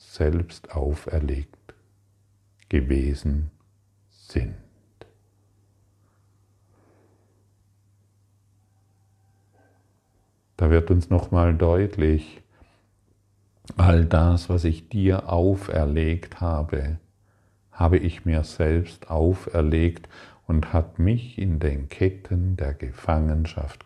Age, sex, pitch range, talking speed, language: 50-69, male, 80-100 Hz, 75 wpm, German